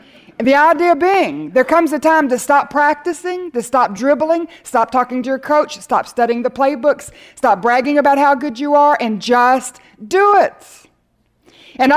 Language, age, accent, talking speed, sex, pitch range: English, 50-69, American, 170 wpm, female, 230-310 Hz